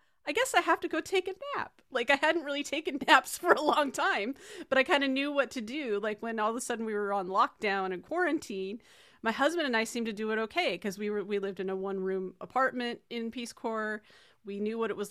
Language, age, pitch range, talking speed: English, 30-49, 200-255 Hz, 260 wpm